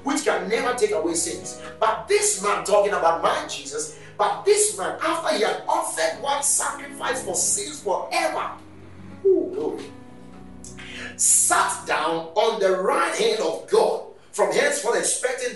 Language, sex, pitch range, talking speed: English, male, 230-385 Hz, 145 wpm